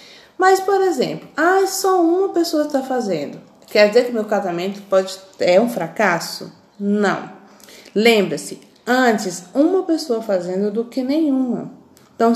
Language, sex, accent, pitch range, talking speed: Portuguese, female, Brazilian, 185-255 Hz, 135 wpm